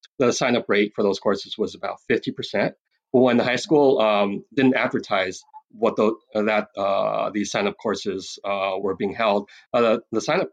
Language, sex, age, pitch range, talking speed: English, male, 30-49, 115-165 Hz, 190 wpm